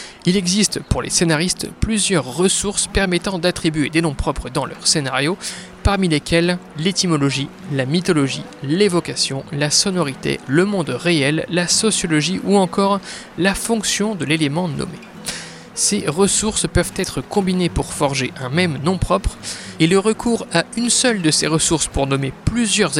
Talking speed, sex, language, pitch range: 150 wpm, male, French, 150-195 Hz